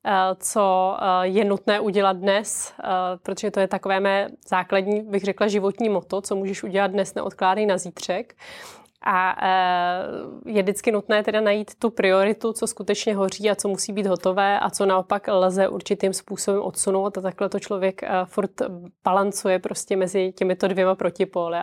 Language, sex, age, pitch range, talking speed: Czech, female, 20-39, 185-205 Hz, 155 wpm